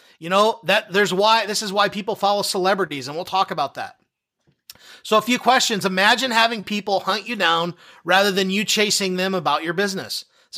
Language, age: English, 30-49